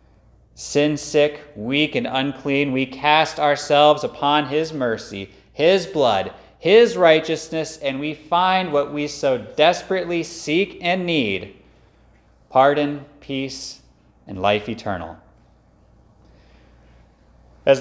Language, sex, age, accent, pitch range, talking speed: English, male, 30-49, American, 125-170 Hz, 100 wpm